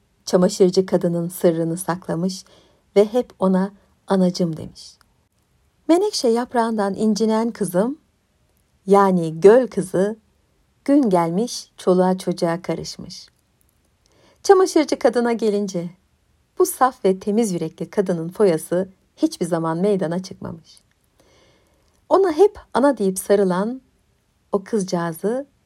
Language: Turkish